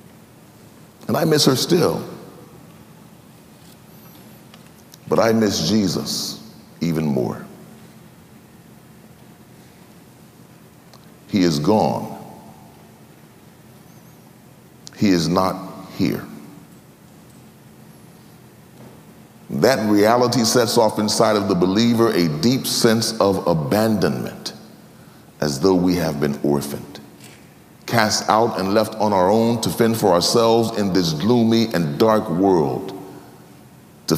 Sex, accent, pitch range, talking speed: male, American, 95-120 Hz, 95 wpm